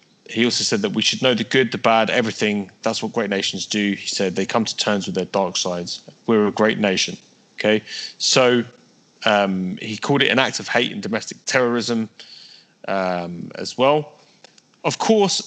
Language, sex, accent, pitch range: English, male, British, 105-145 Hz